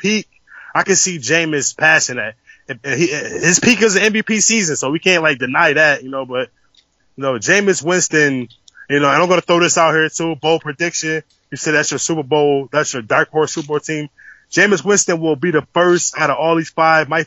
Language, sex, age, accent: English, male, 20-39, American